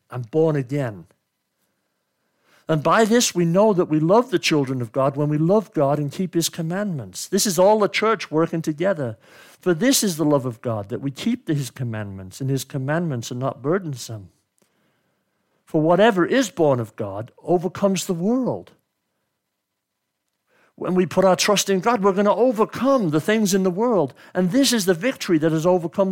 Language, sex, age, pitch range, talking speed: English, male, 60-79, 145-225 Hz, 185 wpm